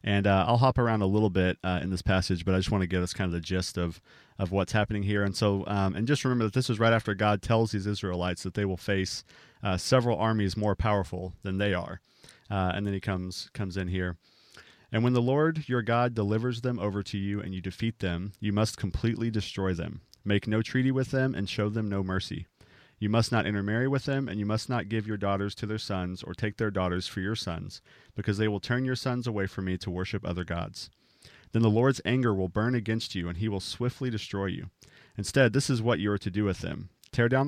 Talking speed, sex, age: 250 wpm, male, 30-49